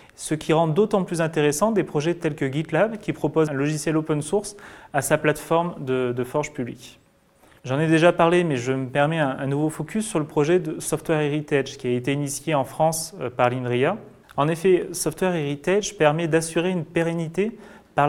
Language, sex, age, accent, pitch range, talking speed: French, male, 30-49, French, 135-170 Hz, 190 wpm